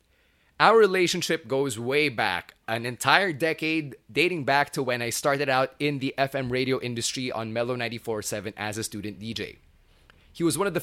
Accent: Filipino